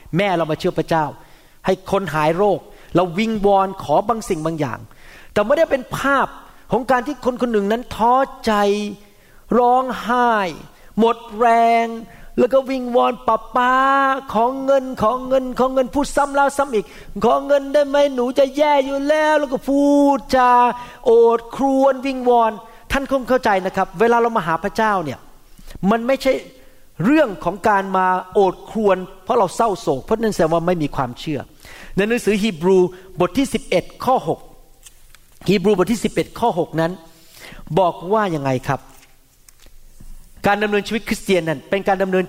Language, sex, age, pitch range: Thai, male, 30-49, 185-255 Hz